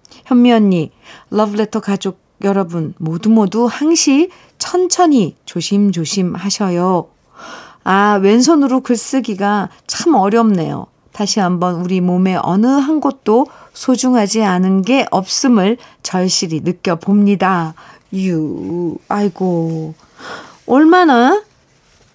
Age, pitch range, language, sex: 40-59, 175-225 Hz, Korean, female